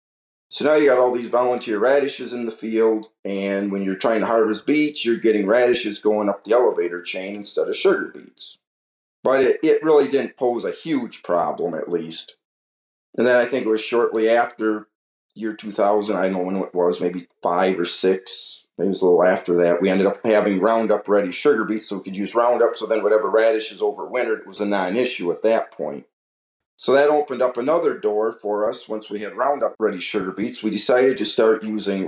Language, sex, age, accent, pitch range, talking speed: English, male, 40-59, American, 100-120 Hz, 205 wpm